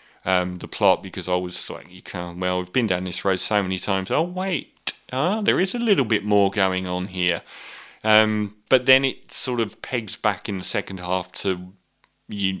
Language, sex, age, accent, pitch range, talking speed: English, male, 30-49, British, 95-115 Hz, 210 wpm